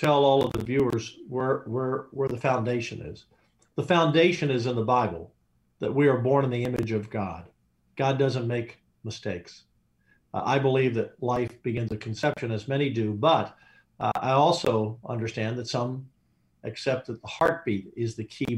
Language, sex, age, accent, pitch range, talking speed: English, male, 50-69, American, 110-135 Hz, 180 wpm